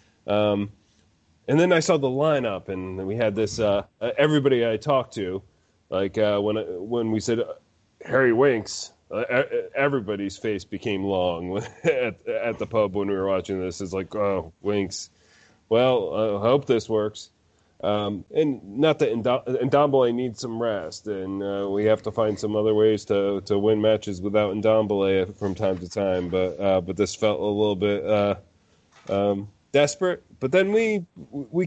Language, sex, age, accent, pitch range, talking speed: English, male, 30-49, American, 100-130 Hz, 170 wpm